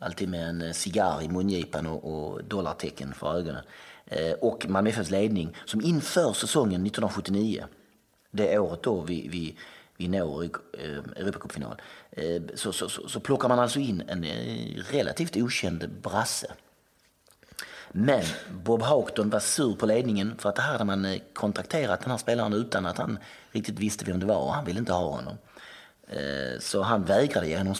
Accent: native